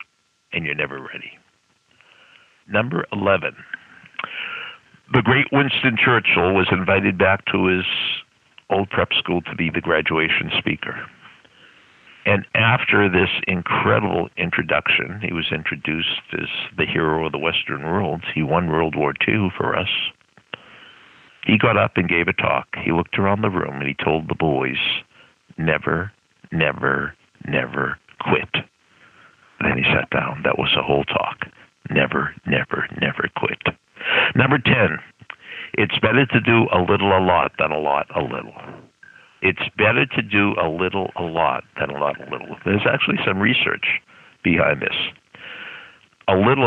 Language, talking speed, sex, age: English, 150 wpm, male, 60-79